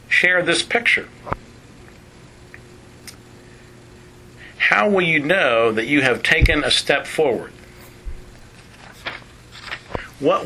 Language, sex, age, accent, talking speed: English, male, 50-69, American, 85 wpm